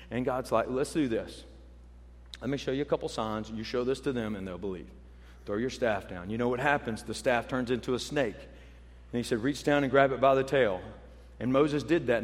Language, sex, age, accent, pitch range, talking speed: English, male, 40-59, American, 100-145 Hz, 245 wpm